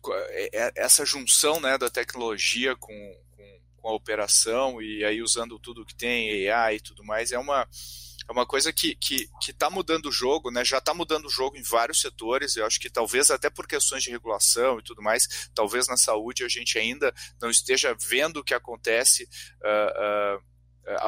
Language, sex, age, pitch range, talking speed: Portuguese, male, 30-49, 115-160 Hz, 190 wpm